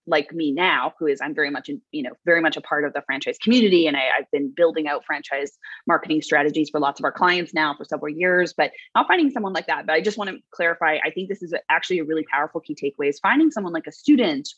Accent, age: American, 20-39